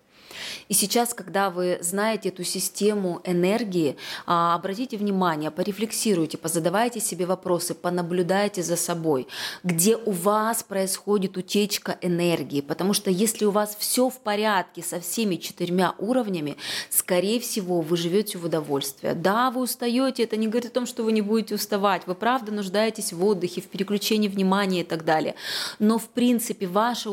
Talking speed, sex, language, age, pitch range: 155 wpm, female, Russian, 20-39, 175-215 Hz